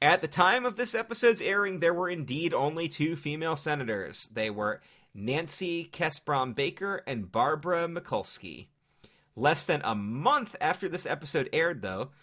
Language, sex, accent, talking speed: English, male, American, 145 wpm